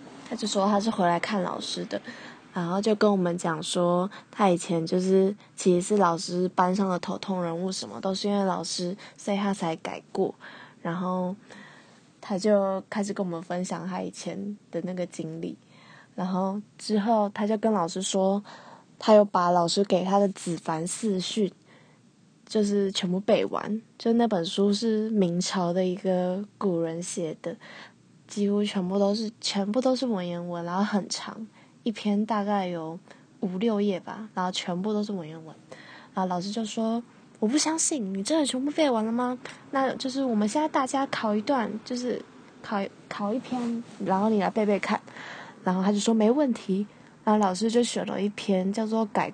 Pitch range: 185-220 Hz